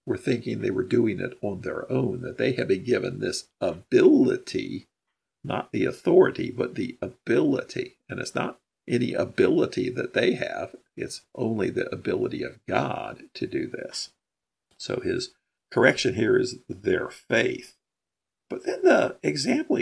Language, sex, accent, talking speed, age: English, male, American, 150 wpm, 50-69